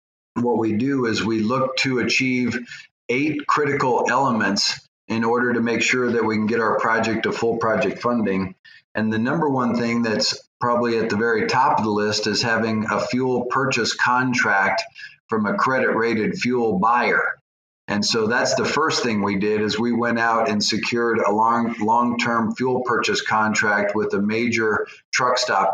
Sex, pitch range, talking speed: male, 105-120 Hz, 180 wpm